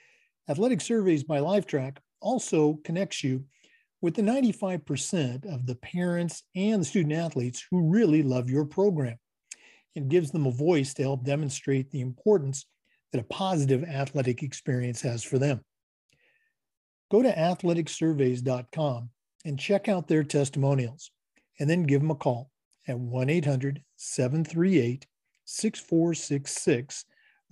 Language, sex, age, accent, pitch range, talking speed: English, male, 50-69, American, 130-180 Hz, 120 wpm